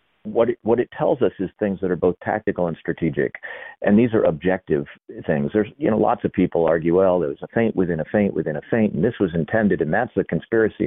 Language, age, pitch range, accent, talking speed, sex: English, 40-59, 80-95 Hz, American, 250 wpm, male